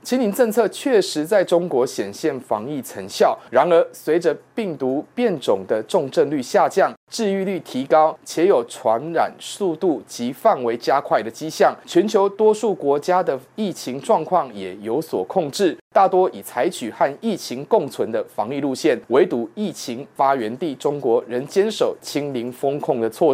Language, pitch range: Chinese, 145-215 Hz